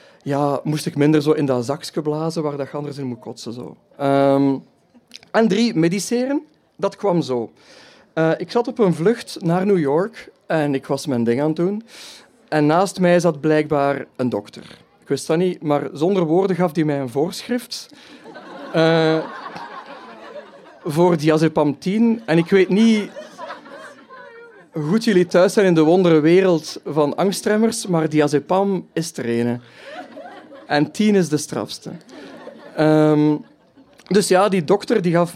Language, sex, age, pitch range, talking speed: Dutch, male, 50-69, 145-195 Hz, 160 wpm